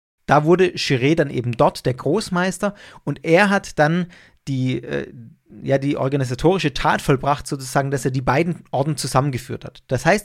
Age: 40-59